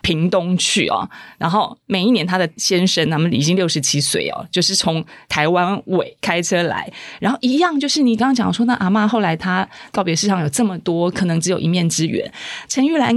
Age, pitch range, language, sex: 30-49, 175-245 Hz, Chinese, female